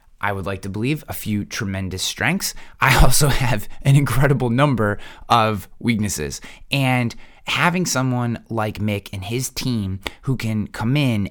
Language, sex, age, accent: English, male, 20-39, American